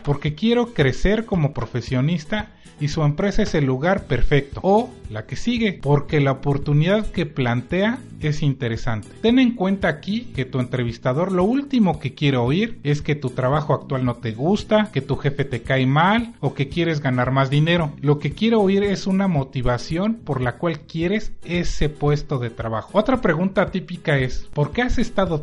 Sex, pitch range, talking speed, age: male, 130-190 Hz, 185 wpm, 40-59